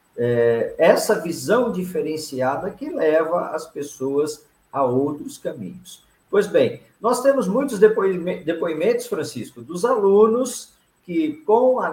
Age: 50-69